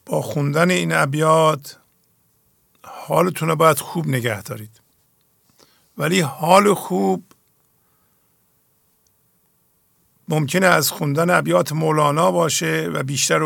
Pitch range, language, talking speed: 140-170 Hz, English, 95 wpm